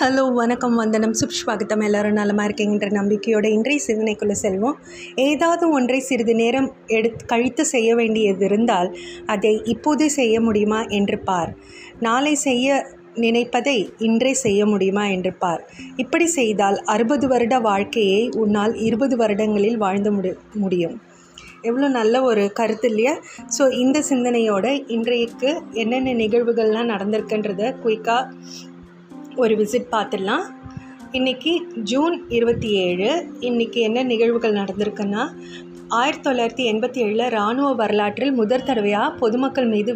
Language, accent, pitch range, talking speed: Tamil, native, 210-255 Hz, 120 wpm